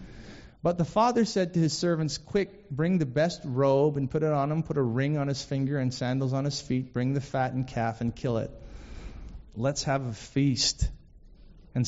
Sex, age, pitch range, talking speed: male, 30-49, 115-155 Hz, 200 wpm